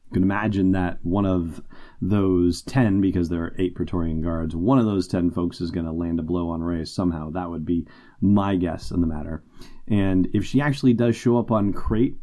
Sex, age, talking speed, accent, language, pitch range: male, 30-49, 215 wpm, American, English, 90-115 Hz